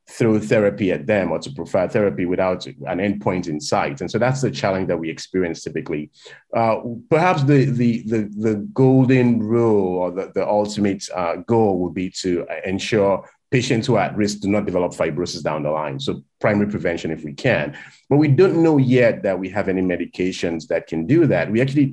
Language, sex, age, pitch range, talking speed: English, male, 30-49, 95-135 Hz, 200 wpm